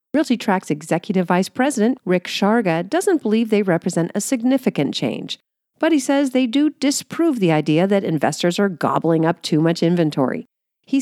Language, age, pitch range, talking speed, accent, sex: English, 50-69, 155-240 Hz, 170 wpm, American, female